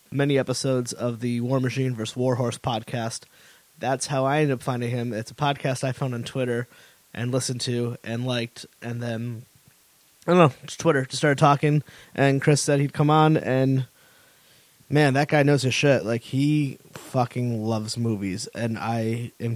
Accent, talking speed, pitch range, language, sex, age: American, 185 wpm, 120-140 Hz, English, male, 20-39